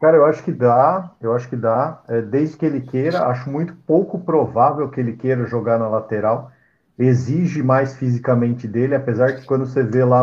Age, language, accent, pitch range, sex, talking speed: 50-69, Portuguese, Brazilian, 125-165 Hz, male, 195 wpm